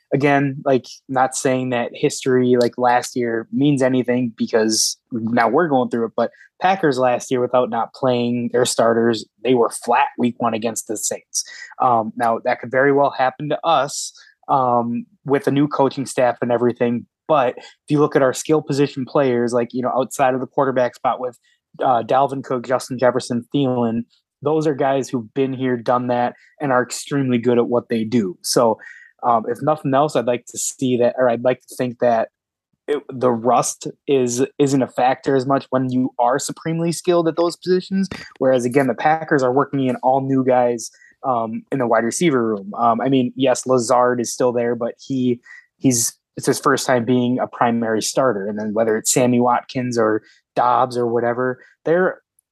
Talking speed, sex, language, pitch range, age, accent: 195 wpm, male, English, 120-140 Hz, 20-39, American